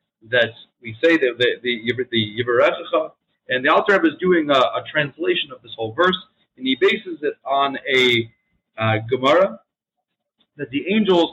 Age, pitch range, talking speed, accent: 40-59, 130-200 Hz, 170 wpm, American